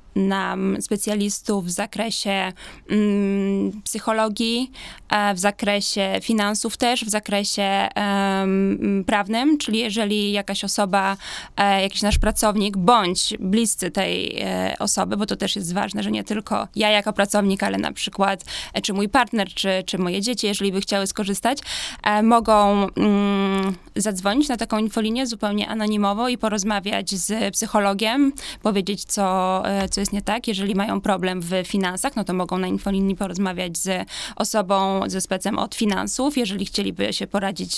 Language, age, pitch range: Polish, 20-39, 195-220 Hz